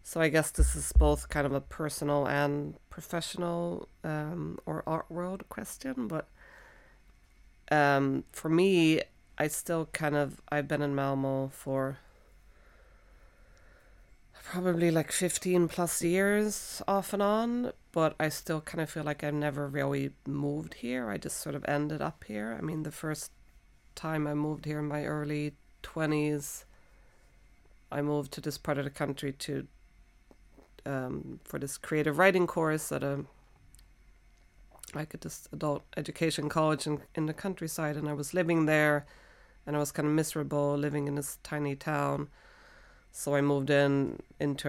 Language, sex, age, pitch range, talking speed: English, female, 30-49, 135-160 Hz, 155 wpm